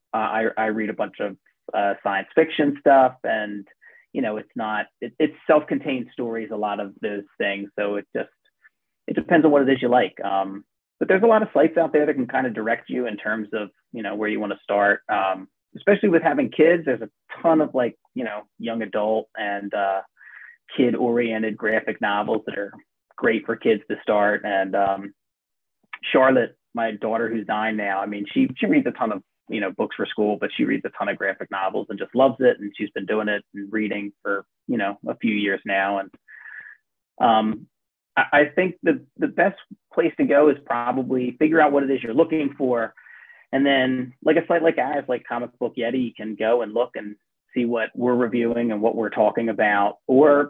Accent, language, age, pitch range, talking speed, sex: American, English, 30-49, 105-140 Hz, 220 wpm, male